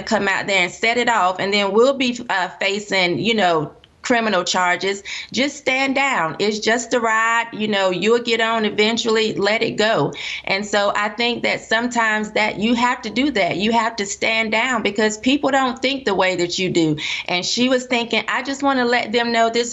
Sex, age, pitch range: female, 30-49, 195-235 Hz